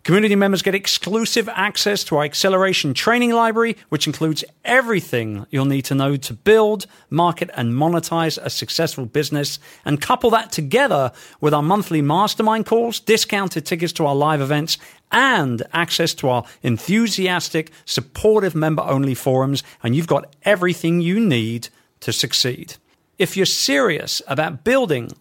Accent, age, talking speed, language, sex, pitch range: British, 40-59, 145 wpm, English, male, 140-195 Hz